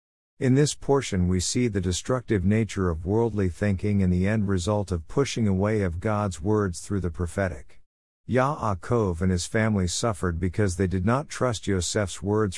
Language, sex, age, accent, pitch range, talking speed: English, male, 50-69, American, 90-115 Hz, 170 wpm